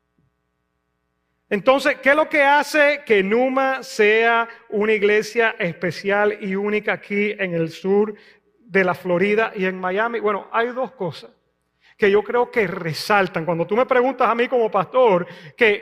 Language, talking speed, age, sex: English, 160 wpm, 30-49, male